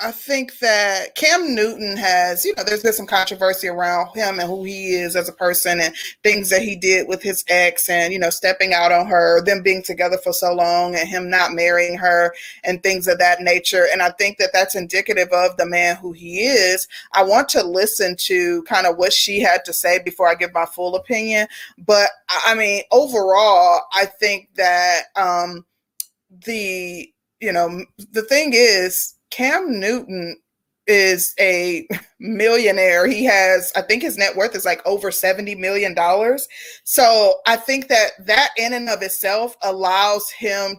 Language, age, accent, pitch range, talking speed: English, 20-39, American, 180-215 Hz, 185 wpm